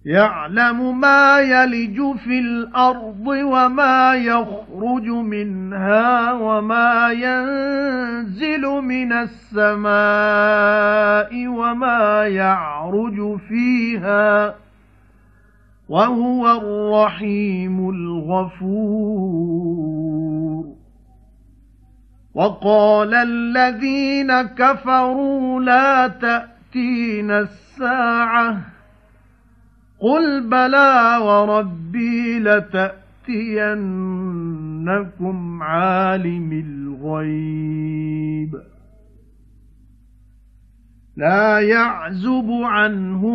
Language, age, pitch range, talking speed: English, 50-69, 180-235 Hz, 45 wpm